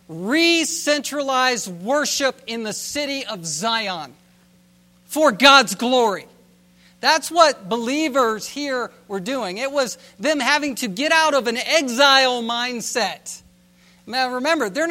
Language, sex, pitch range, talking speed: English, male, 205-285 Hz, 120 wpm